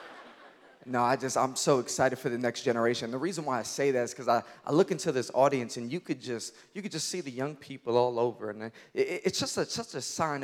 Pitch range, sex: 130-180 Hz, male